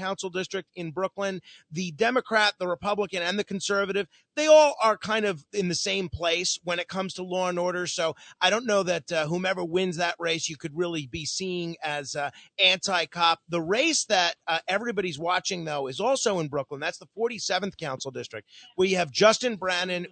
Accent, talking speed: American, 195 wpm